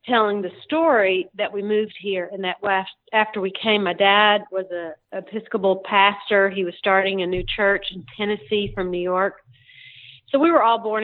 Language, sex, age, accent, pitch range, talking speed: English, female, 40-59, American, 185-210 Hz, 185 wpm